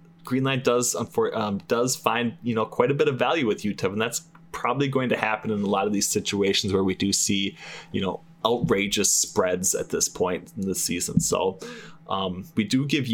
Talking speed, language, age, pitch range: 210 wpm, English, 20-39, 100-145 Hz